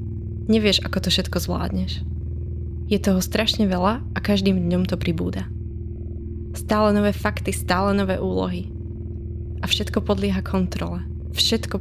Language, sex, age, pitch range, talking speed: Slovak, female, 20-39, 90-110 Hz, 125 wpm